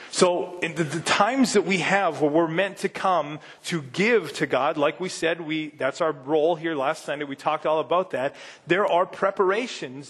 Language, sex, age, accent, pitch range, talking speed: English, male, 30-49, American, 150-185 Hz, 210 wpm